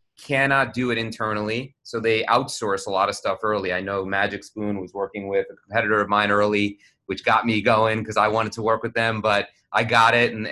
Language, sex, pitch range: English, male, 105-120 Hz